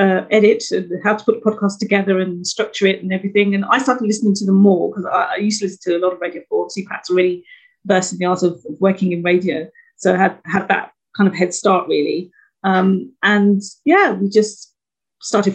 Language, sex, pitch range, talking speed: English, female, 185-255 Hz, 240 wpm